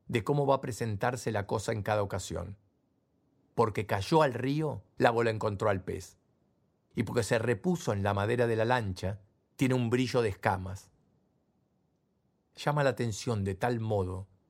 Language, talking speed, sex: Spanish, 165 wpm, male